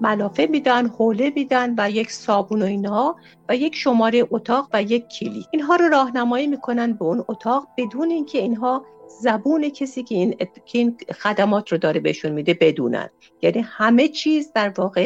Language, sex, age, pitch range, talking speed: Persian, female, 50-69, 190-255 Hz, 175 wpm